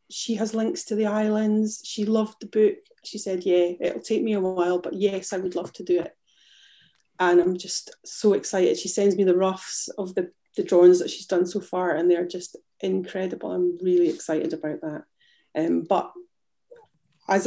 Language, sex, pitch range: English, female, 180-255 Hz